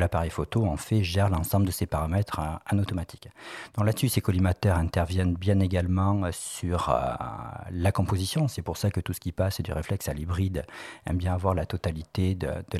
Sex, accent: male, French